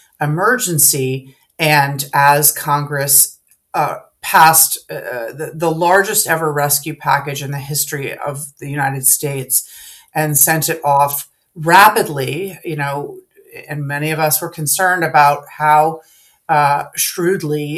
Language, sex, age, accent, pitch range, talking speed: English, female, 40-59, American, 145-165 Hz, 125 wpm